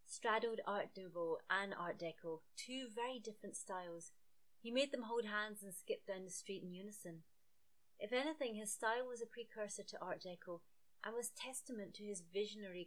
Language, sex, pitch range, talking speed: English, female, 175-225 Hz, 175 wpm